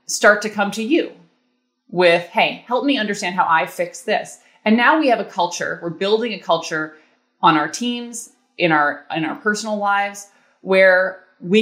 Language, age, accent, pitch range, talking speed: English, 30-49, American, 165-225 Hz, 180 wpm